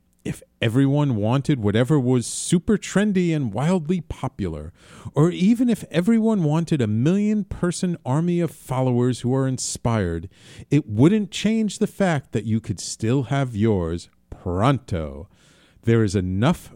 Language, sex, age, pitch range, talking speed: English, male, 40-59, 100-165 Hz, 135 wpm